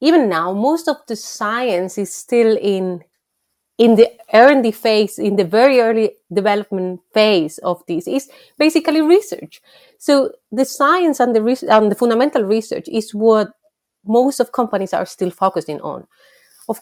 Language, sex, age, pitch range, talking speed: English, female, 30-49, 180-250 Hz, 155 wpm